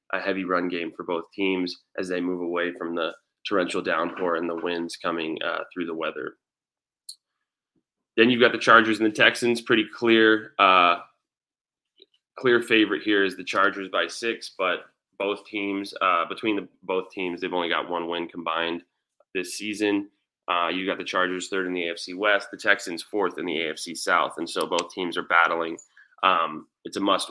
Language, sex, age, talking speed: English, male, 20-39, 185 wpm